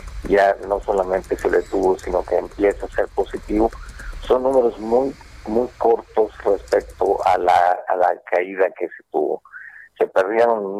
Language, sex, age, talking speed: Spanish, male, 50-69, 155 wpm